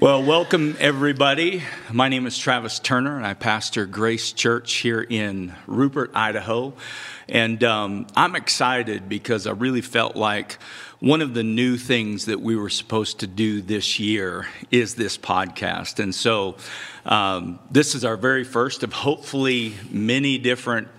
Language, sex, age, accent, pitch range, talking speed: English, male, 50-69, American, 100-125 Hz, 155 wpm